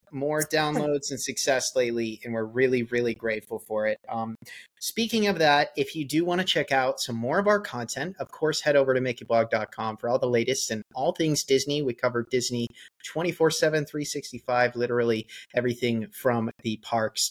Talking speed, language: 180 wpm, English